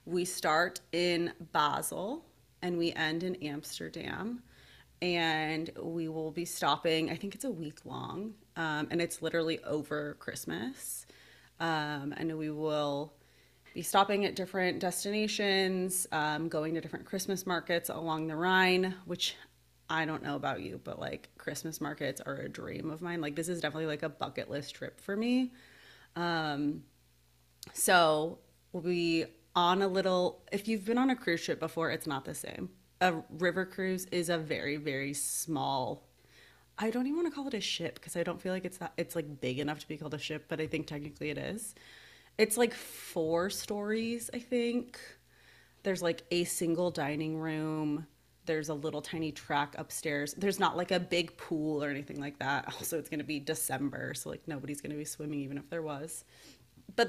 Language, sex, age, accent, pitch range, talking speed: English, female, 30-49, American, 150-185 Hz, 180 wpm